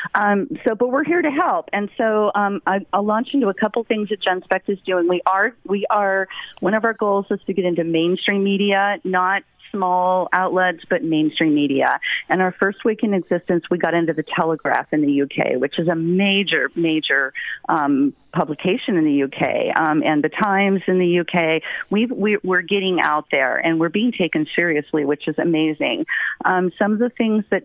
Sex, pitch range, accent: female, 170-205 Hz, American